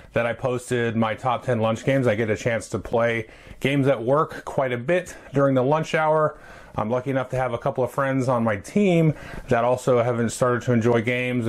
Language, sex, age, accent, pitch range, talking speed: English, male, 30-49, American, 125-155 Hz, 225 wpm